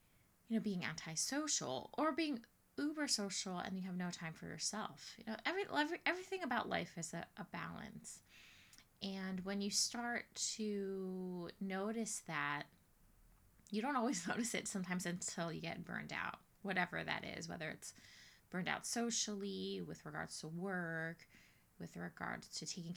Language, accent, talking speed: English, American, 155 wpm